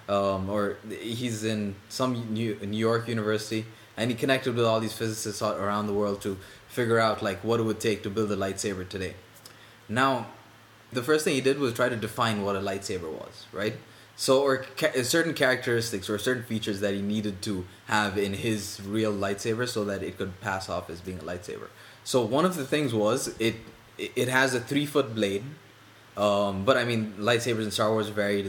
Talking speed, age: 200 wpm, 20-39